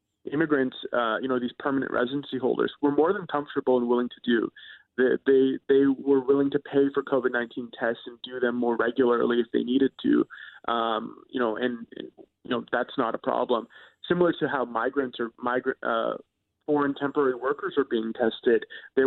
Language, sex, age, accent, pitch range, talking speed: English, male, 30-49, American, 125-160 Hz, 190 wpm